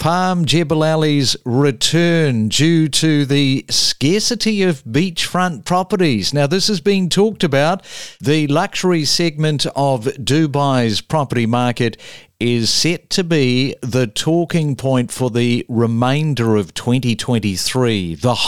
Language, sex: English, male